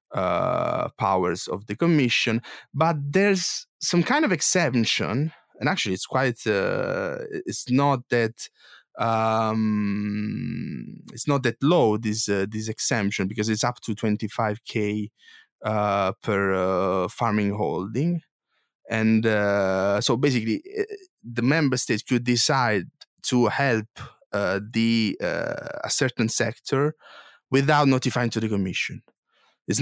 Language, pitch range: English, 105-125 Hz